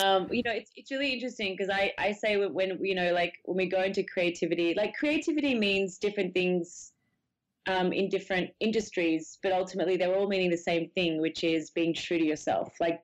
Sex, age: female, 20-39